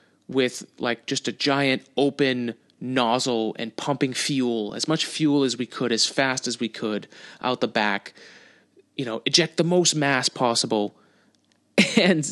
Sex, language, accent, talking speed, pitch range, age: male, English, American, 155 wpm, 120-155 Hz, 30-49